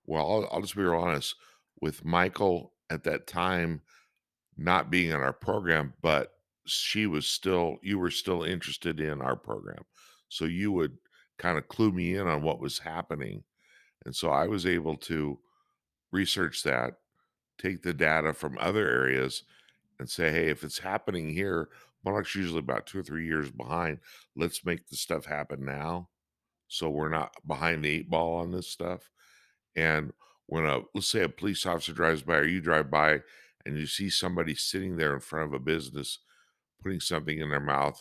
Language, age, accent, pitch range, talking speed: English, 60-79, American, 70-85 Hz, 185 wpm